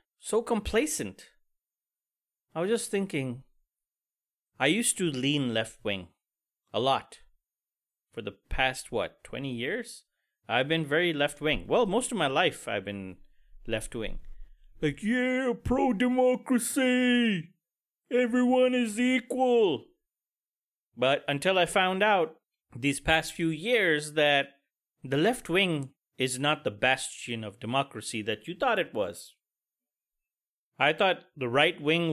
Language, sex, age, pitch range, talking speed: English, male, 30-49, 130-190 Hz, 130 wpm